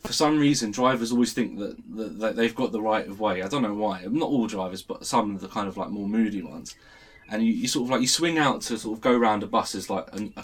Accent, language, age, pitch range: British, English, 20-39, 105-135 Hz